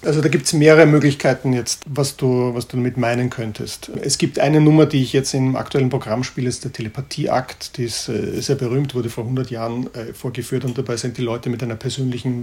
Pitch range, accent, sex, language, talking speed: 115-140 Hz, German, male, German, 220 wpm